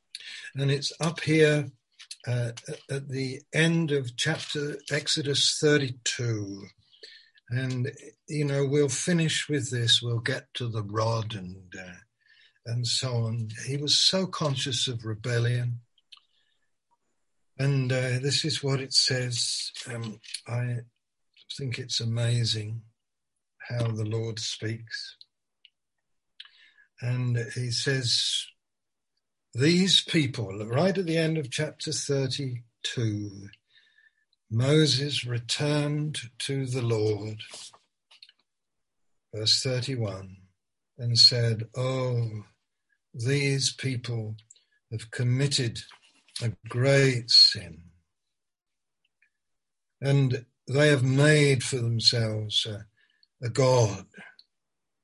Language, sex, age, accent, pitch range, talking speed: English, male, 60-79, British, 115-145 Hz, 95 wpm